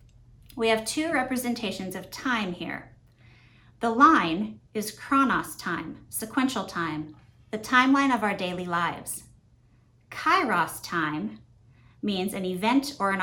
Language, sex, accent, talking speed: English, female, American, 120 wpm